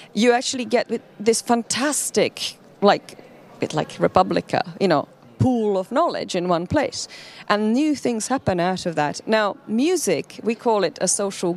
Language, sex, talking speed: English, female, 155 wpm